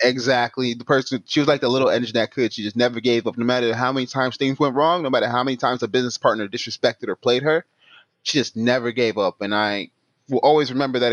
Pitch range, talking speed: 115-135 Hz, 255 wpm